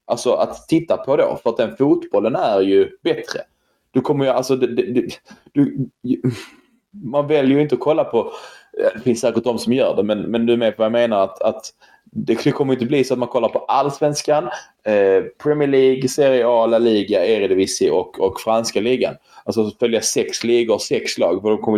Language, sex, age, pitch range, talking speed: Swedish, male, 20-39, 115-170 Hz, 220 wpm